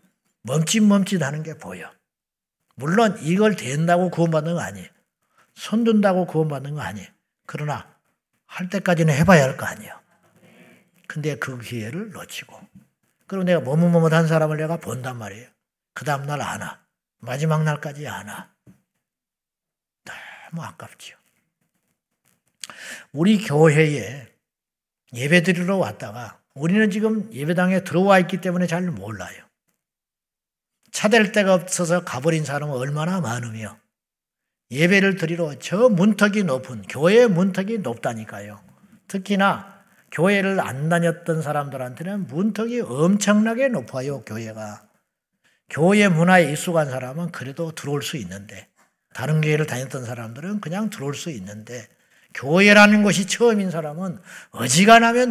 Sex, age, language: male, 60-79, Korean